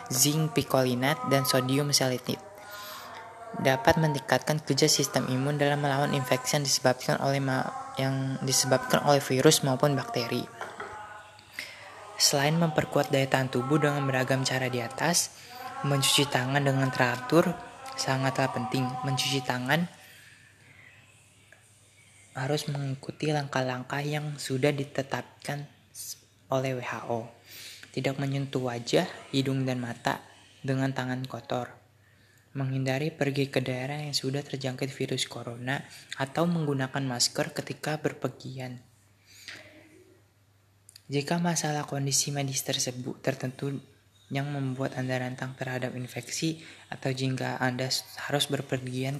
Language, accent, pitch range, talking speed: Indonesian, native, 125-145 Hz, 110 wpm